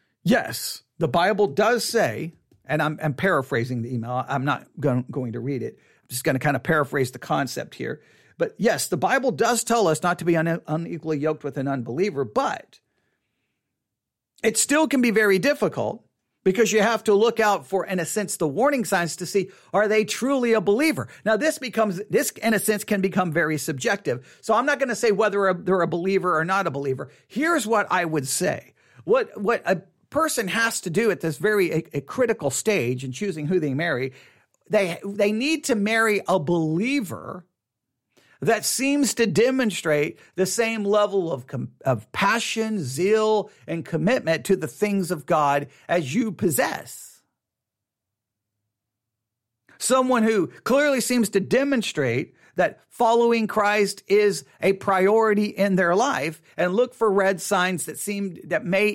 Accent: American